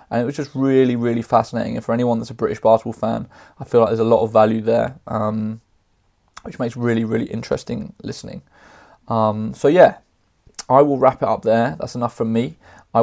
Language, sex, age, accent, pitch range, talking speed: English, male, 20-39, British, 115-125 Hz, 205 wpm